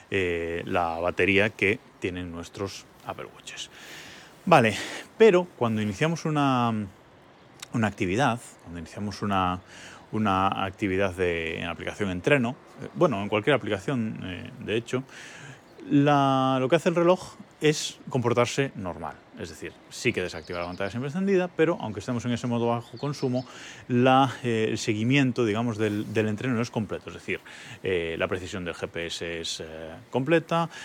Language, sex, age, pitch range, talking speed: Spanish, male, 30-49, 95-135 Hz, 155 wpm